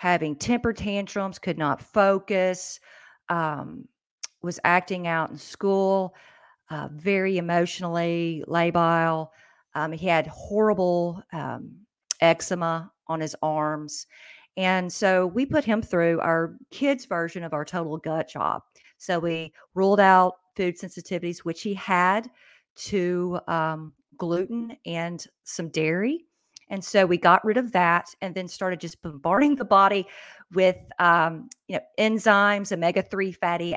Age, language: 50-69, English